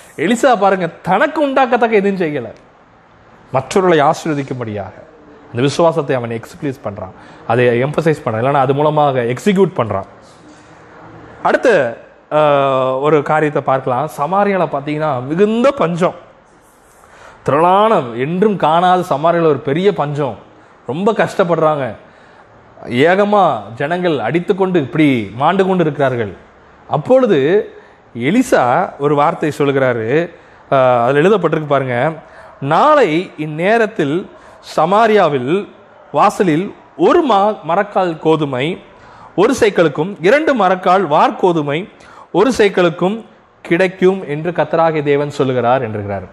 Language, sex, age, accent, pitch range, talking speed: Tamil, male, 30-49, native, 140-195 Hz, 70 wpm